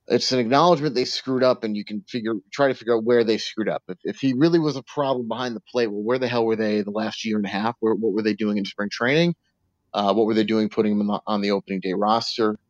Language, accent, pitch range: English, American, 95-125 Hz